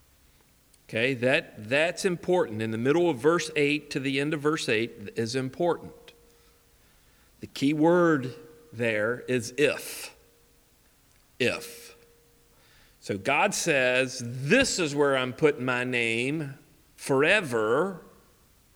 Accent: American